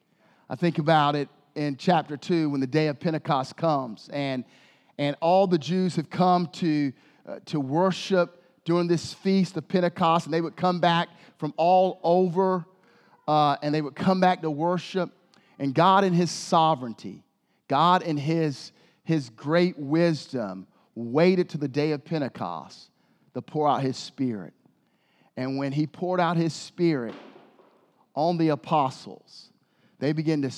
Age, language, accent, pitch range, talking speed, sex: 40-59, English, American, 155-195 Hz, 155 wpm, male